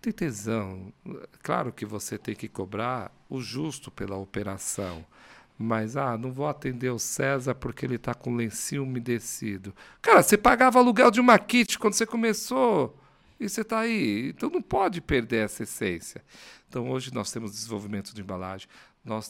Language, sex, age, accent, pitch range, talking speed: Portuguese, male, 50-69, Brazilian, 95-120 Hz, 170 wpm